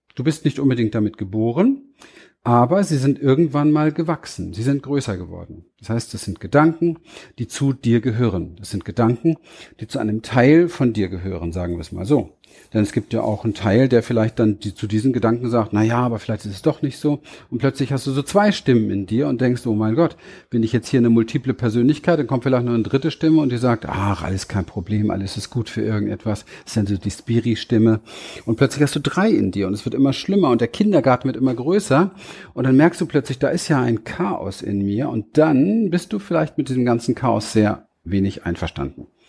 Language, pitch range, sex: German, 105-140 Hz, male